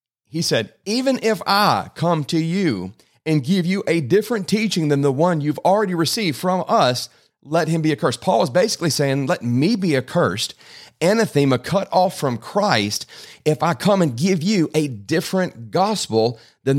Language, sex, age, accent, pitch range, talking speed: English, male, 40-59, American, 125-170 Hz, 175 wpm